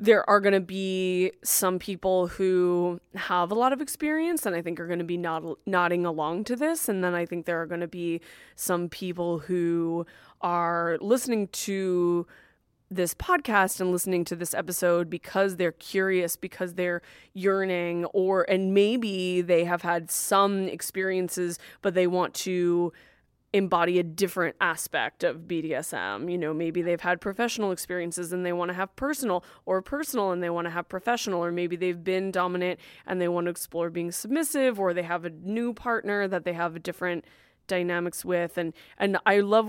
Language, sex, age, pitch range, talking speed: English, female, 20-39, 175-195 Hz, 180 wpm